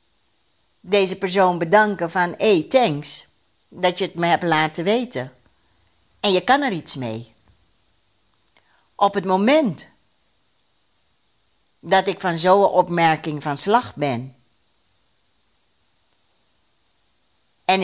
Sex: female